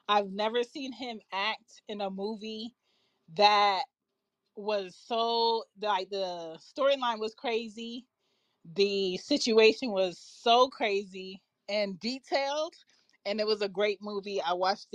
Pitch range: 185-230 Hz